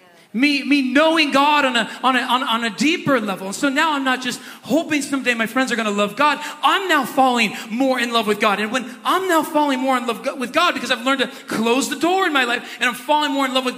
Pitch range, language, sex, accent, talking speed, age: 235-300 Hz, English, male, American, 270 wpm, 40-59